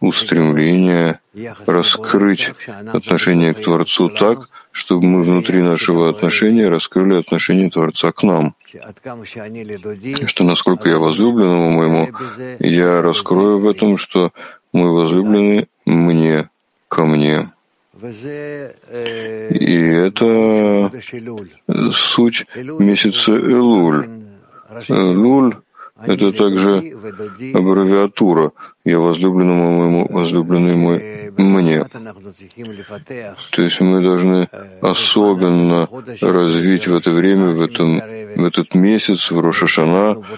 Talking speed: 90 wpm